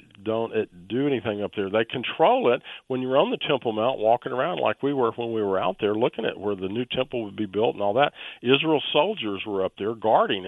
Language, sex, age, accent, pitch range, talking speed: English, male, 50-69, American, 100-125 Hz, 240 wpm